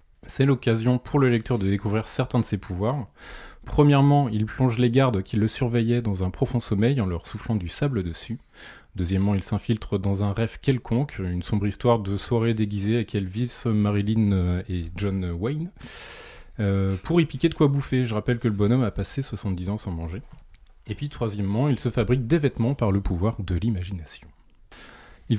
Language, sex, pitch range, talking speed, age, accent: French, male, 100-125 Hz, 190 wpm, 20-39, French